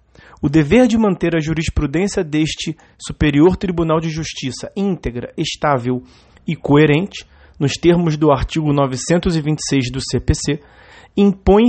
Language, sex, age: Portuguese, male, 30-49